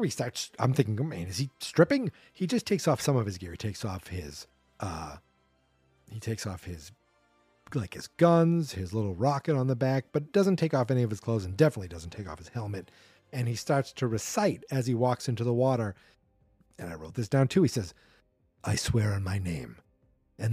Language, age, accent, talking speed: English, 40-59, American, 215 wpm